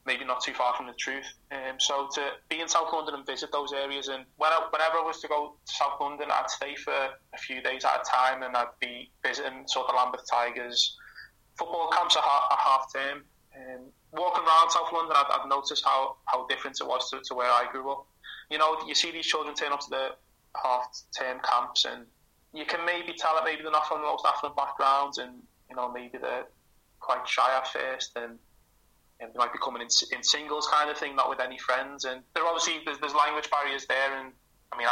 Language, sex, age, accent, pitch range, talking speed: English, male, 20-39, British, 125-155 Hz, 230 wpm